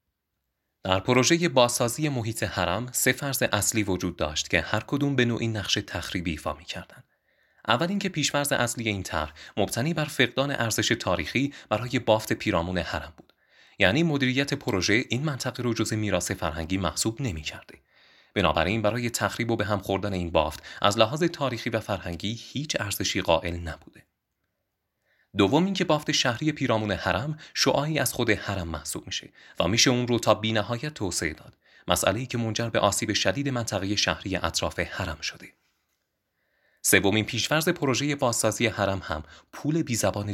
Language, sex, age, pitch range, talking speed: Persian, male, 30-49, 95-130 Hz, 155 wpm